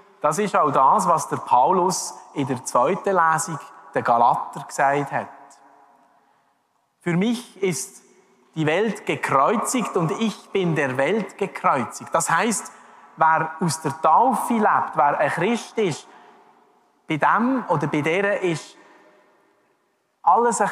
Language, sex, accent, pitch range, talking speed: German, male, Austrian, 140-195 Hz, 130 wpm